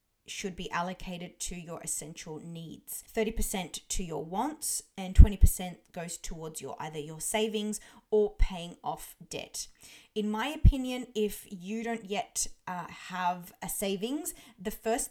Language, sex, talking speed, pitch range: English, female, 145 wpm, 165-210 Hz